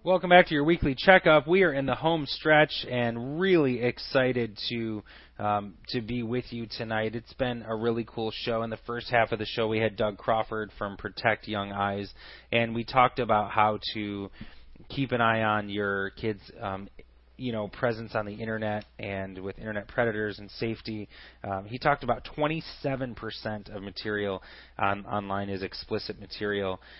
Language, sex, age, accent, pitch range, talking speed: English, male, 30-49, American, 100-120 Hz, 180 wpm